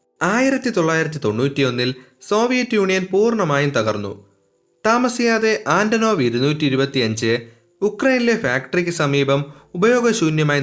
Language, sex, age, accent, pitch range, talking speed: Malayalam, male, 30-49, native, 120-200 Hz, 85 wpm